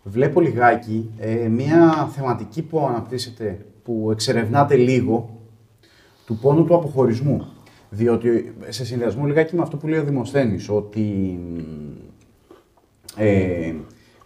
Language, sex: Greek, male